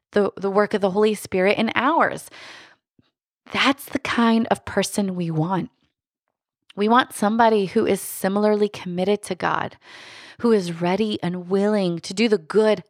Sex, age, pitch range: female, 30-49, 170-205 Hz